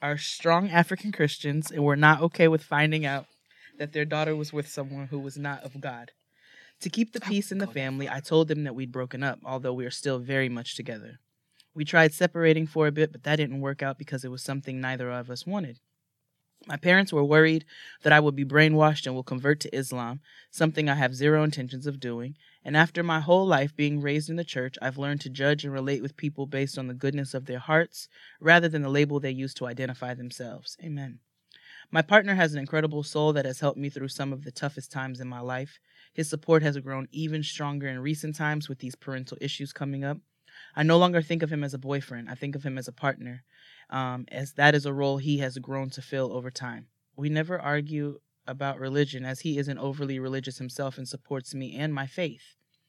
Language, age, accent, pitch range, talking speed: English, 20-39, American, 130-155 Hz, 225 wpm